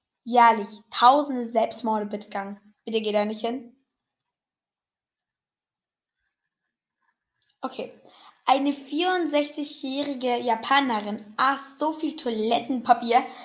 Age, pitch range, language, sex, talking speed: 10-29, 225-275 Hz, English, female, 80 wpm